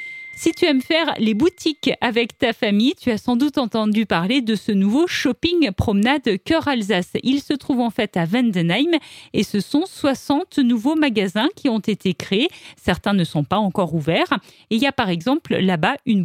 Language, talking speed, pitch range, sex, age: French, 195 wpm, 210-300 Hz, female, 40-59